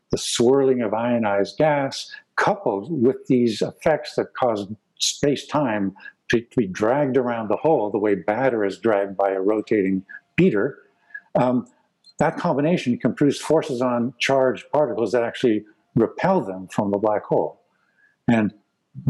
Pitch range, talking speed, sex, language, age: 105-150 Hz, 140 wpm, male, English, 60-79